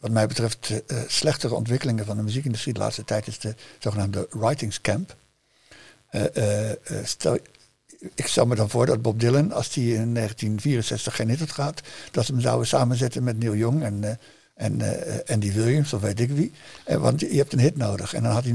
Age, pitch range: 60-79, 105-125 Hz